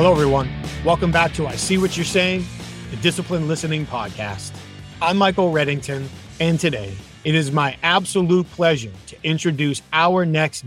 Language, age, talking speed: English, 30-49, 155 wpm